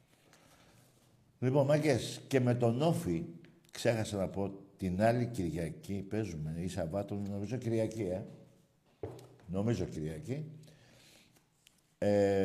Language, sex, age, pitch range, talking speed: Greek, male, 60-79, 95-125 Hz, 100 wpm